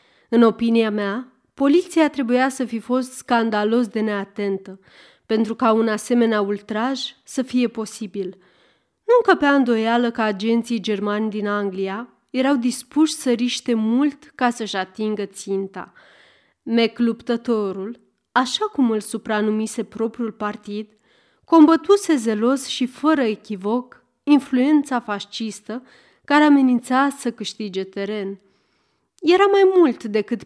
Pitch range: 210-265 Hz